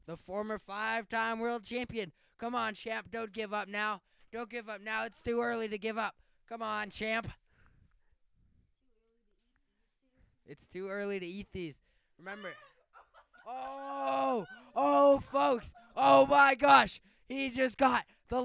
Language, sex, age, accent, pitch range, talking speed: English, male, 20-39, American, 205-255 Hz, 135 wpm